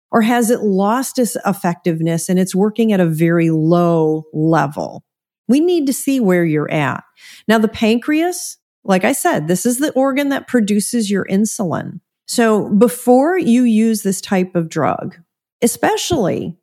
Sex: female